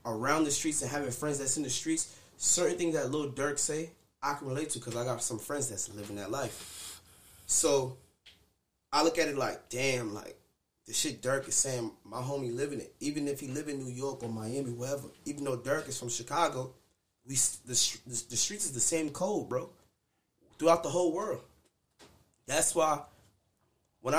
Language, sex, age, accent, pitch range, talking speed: English, male, 20-39, American, 110-145 Hz, 195 wpm